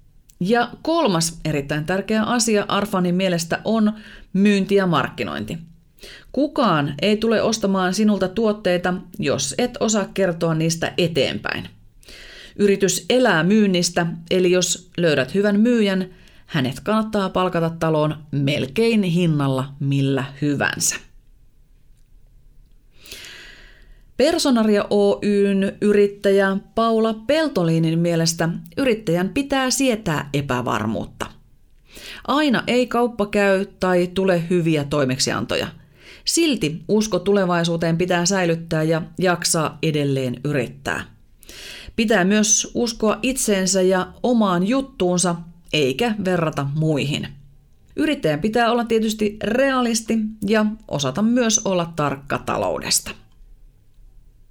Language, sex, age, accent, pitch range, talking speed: Finnish, female, 30-49, native, 165-220 Hz, 95 wpm